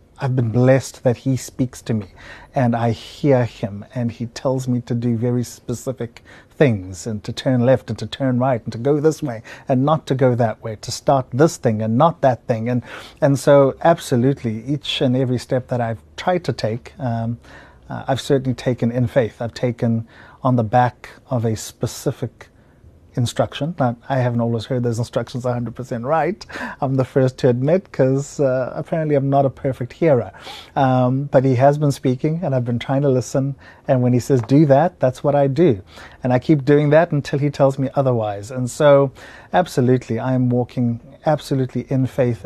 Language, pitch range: English, 115-135 Hz